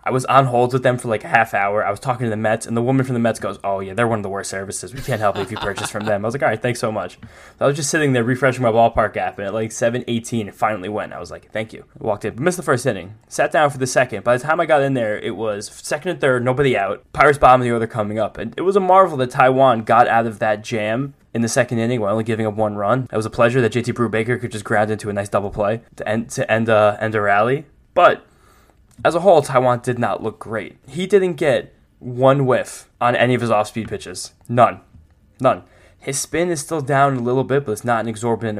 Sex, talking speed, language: male, 285 wpm, English